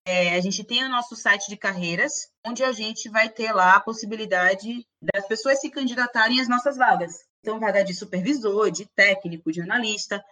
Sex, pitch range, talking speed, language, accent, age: female, 200-275 Hz, 185 wpm, Portuguese, Brazilian, 20-39